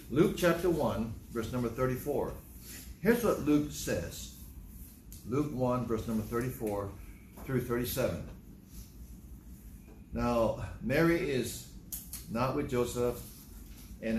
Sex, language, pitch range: male, English, 110-155 Hz